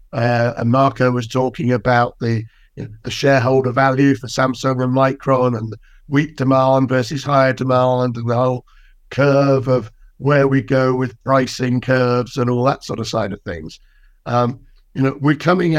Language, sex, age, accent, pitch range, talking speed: English, male, 60-79, British, 120-140 Hz, 165 wpm